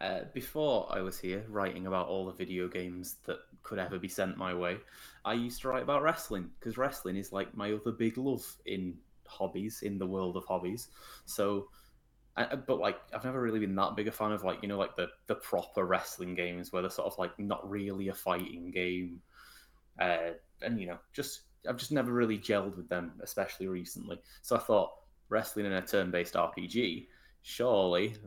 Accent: British